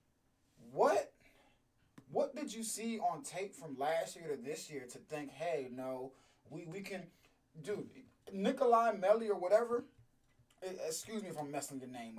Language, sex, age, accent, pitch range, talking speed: English, male, 20-39, American, 130-195 Hz, 160 wpm